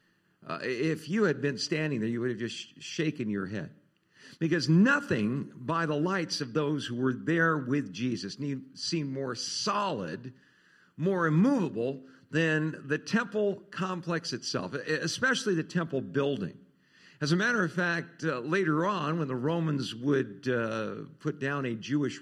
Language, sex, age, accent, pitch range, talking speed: English, male, 50-69, American, 135-175 Hz, 155 wpm